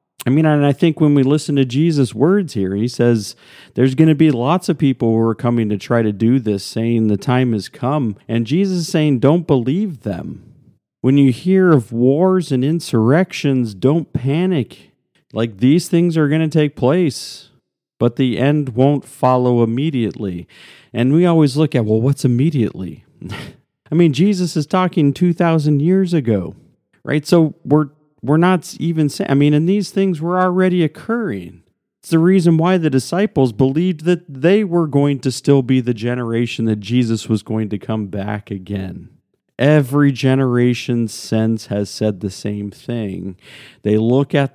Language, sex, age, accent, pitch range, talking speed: English, male, 40-59, American, 120-155 Hz, 175 wpm